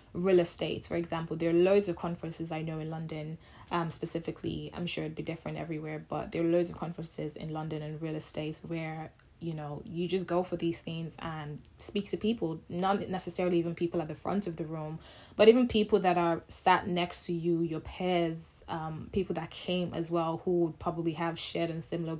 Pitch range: 160-180 Hz